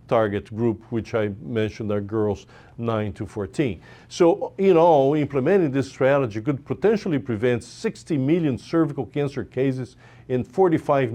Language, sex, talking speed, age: English, male, 140 wpm, 50-69